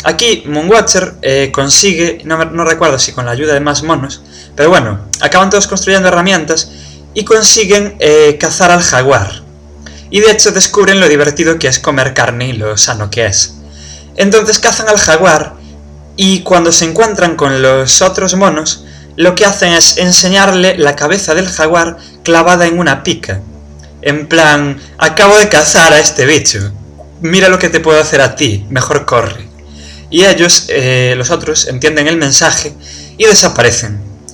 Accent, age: Spanish, 20-39